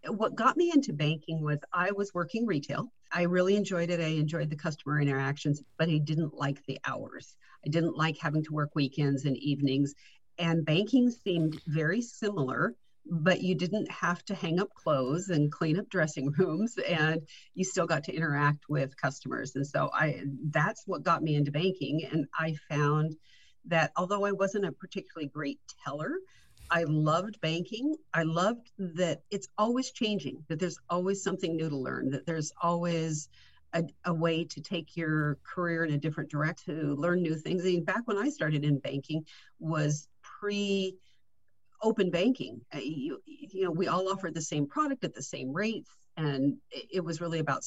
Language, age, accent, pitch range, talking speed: English, 50-69, American, 150-185 Hz, 180 wpm